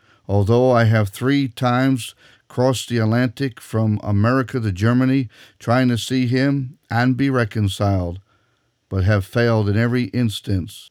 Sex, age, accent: male, 50-69, American